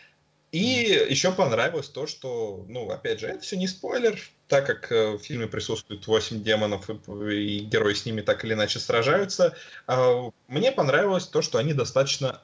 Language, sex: Russian, male